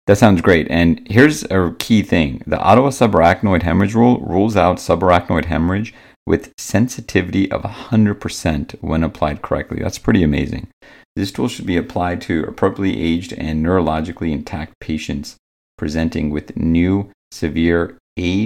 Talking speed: 145 wpm